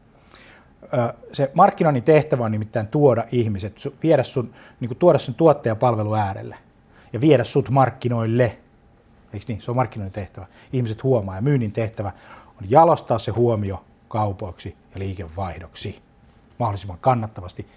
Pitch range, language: 105-125 Hz, Finnish